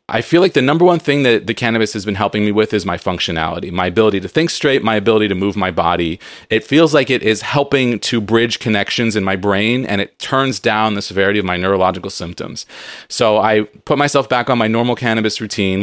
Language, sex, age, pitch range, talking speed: English, male, 30-49, 100-120 Hz, 230 wpm